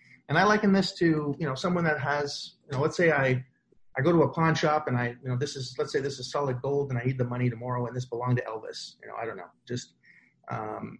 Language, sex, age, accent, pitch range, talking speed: English, male, 30-49, American, 125-155 Hz, 280 wpm